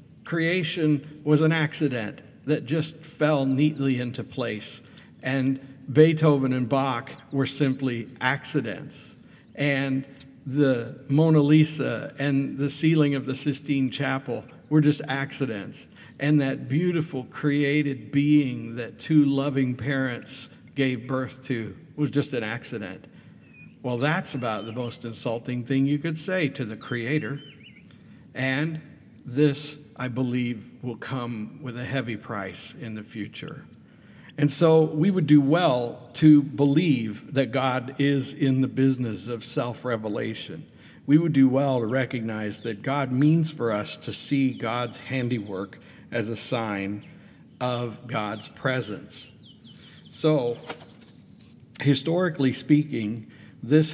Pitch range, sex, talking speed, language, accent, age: 125-150 Hz, male, 125 wpm, English, American, 60-79